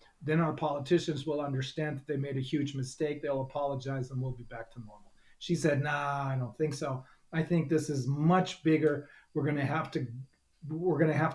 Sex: male